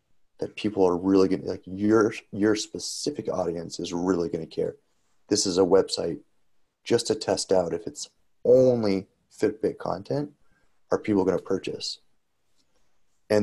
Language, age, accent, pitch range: English, 30-49, American, 90-105 Hz